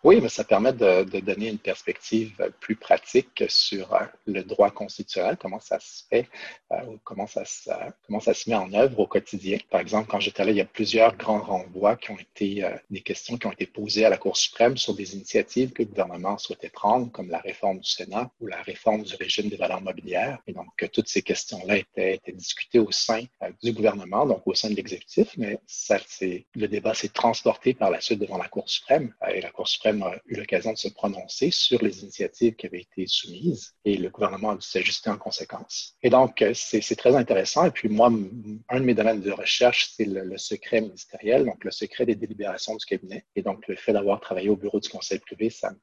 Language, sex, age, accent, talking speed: English, male, 40-59, Canadian, 230 wpm